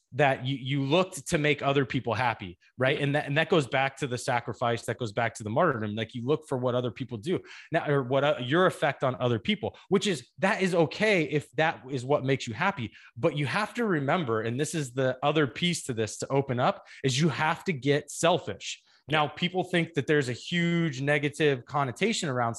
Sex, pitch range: male, 130-180 Hz